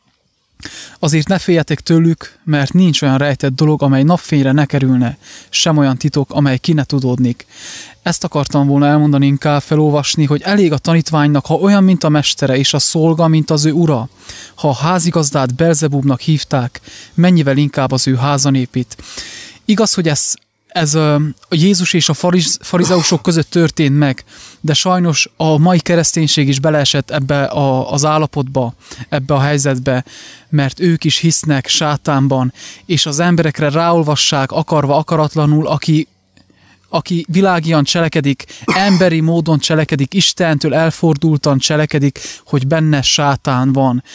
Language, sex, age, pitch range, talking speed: English, male, 20-39, 140-165 Hz, 140 wpm